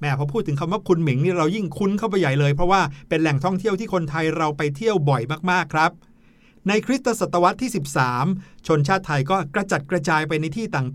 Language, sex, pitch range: Thai, male, 145-190 Hz